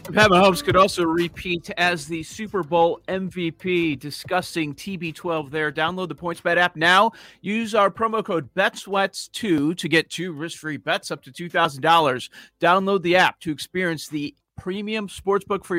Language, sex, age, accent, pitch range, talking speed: English, male, 40-59, American, 145-180 Hz, 150 wpm